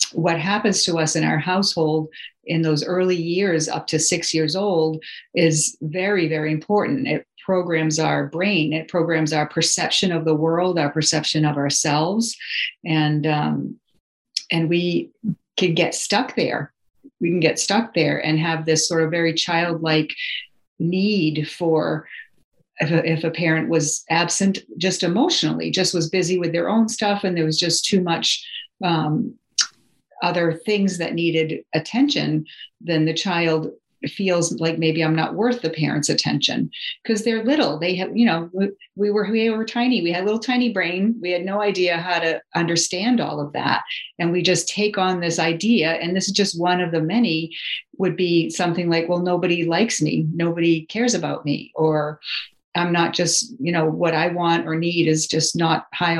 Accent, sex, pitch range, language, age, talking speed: American, female, 160-195 Hz, English, 40-59, 180 wpm